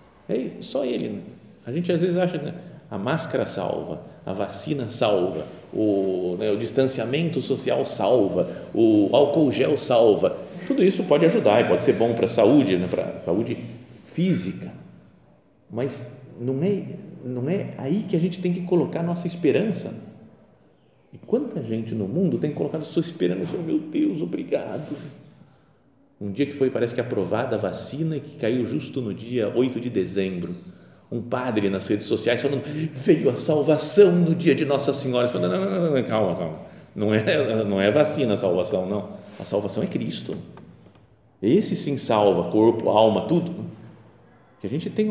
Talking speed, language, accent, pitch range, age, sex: 170 wpm, Portuguese, Brazilian, 120-175 Hz, 50-69, male